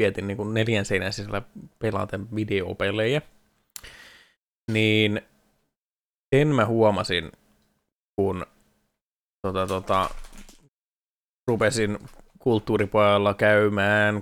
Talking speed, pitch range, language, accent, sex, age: 70 wpm, 100-110 Hz, Finnish, native, male, 20-39